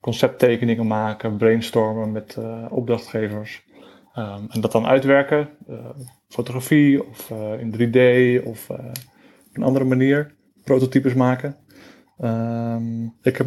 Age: 20-39